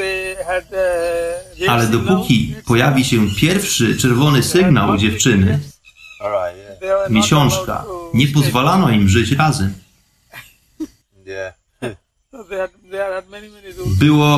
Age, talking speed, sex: 30-49, 65 wpm, male